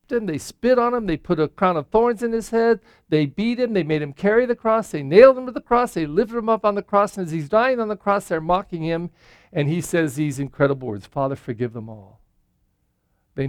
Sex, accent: male, American